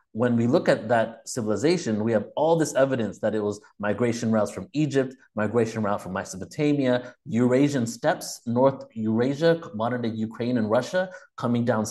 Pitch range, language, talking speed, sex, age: 110-135 Hz, English, 160 wpm, male, 30-49